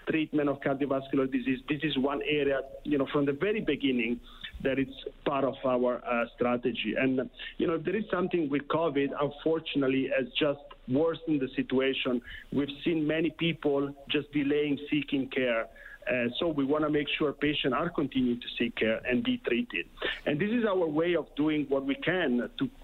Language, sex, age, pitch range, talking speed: English, male, 50-69, 135-160 Hz, 185 wpm